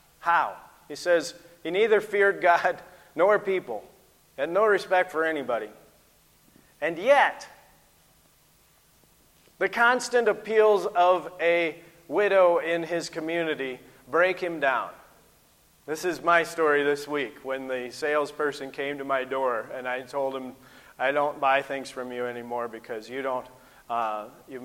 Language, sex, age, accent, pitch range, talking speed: English, male, 40-59, American, 115-150 Hz, 140 wpm